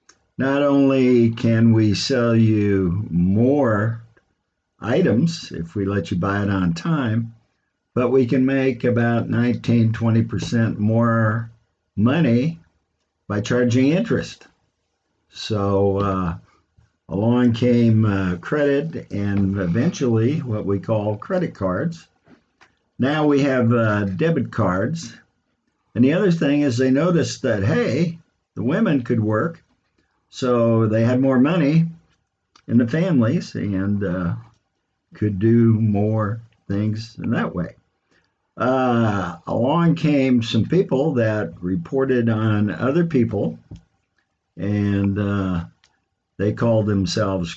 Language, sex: English, male